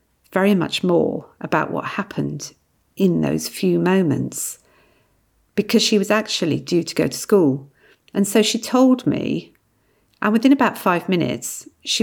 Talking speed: 150 wpm